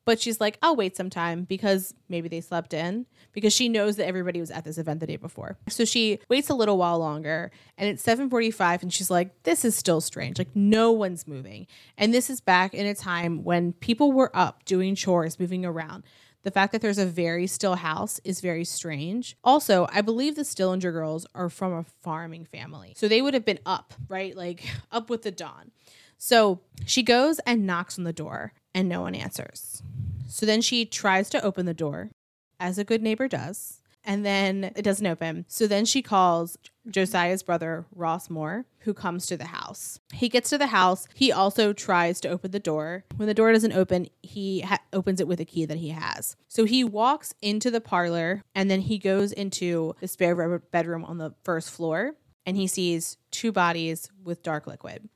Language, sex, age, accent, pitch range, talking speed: English, female, 20-39, American, 170-210 Hz, 205 wpm